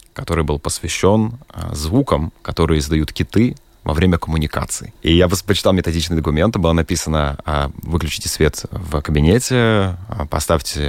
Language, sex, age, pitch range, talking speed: Russian, male, 20-39, 80-95 Hz, 120 wpm